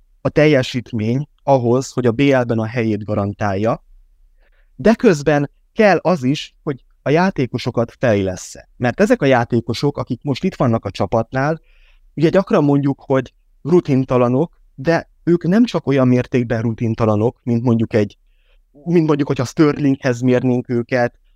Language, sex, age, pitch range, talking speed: Hungarian, male, 20-39, 120-155 Hz, 140 wpm